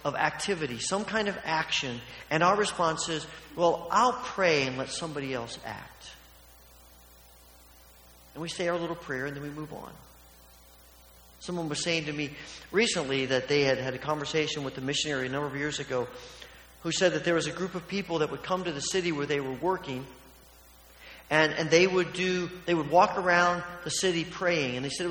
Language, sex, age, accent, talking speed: English, male, 40-59, American, 200 wpm